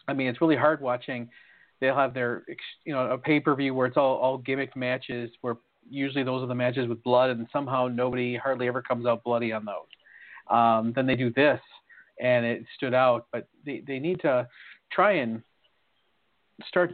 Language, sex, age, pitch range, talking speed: English, male, 40-59, 125-150 Hz, 190 wpm